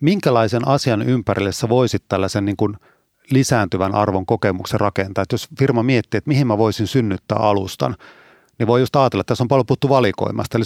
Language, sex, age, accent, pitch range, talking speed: Finnish, male, 30-49, native, 105-125 Hz, 180 wpm